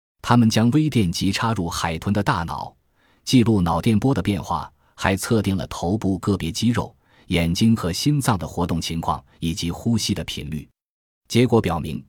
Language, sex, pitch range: Chinese, male, 85-120 Hz